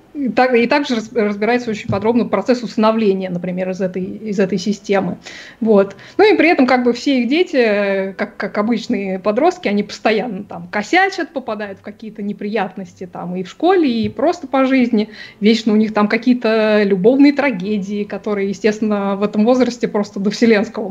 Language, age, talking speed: Russian, 20-39, 165 wpm